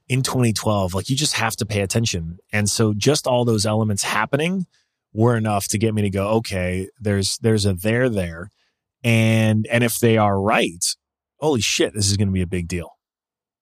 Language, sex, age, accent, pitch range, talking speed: English, male, 20-39, American, 100-125 Hz, 200 wpm